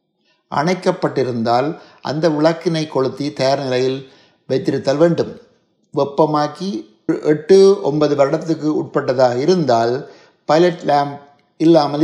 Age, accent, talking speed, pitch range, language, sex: 60-79, native, 85 wpm, 135-170 Hz, Tamil, male